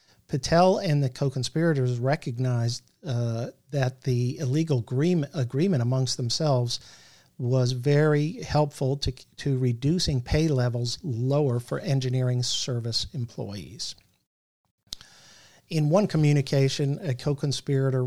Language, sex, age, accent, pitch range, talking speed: English, male, 50-69, American, 125-145 Hz, 100 wpm